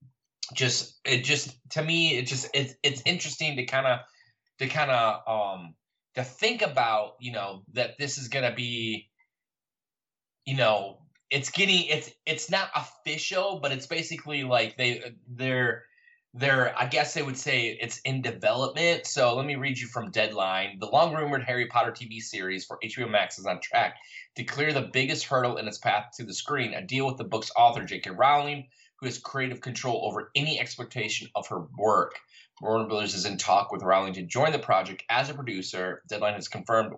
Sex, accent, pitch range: male, American, 110-140 Hz